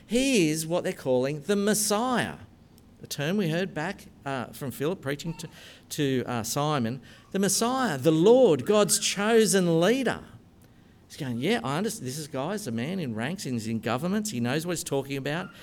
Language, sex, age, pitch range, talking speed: English, male, 50-69, 120-190 Hz, 180 wpm